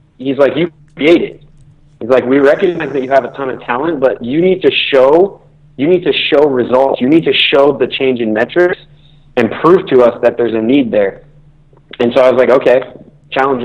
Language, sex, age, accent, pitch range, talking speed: English, male, 30-49, American, 120-145 Hz, 215 wpm